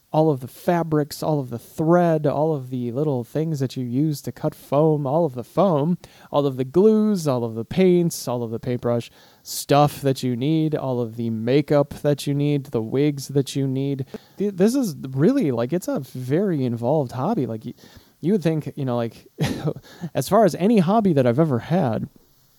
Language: English